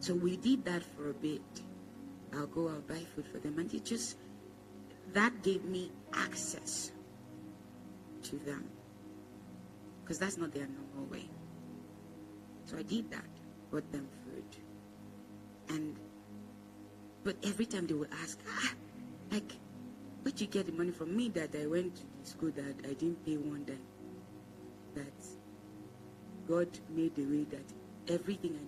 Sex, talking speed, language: female, 150 wpm, English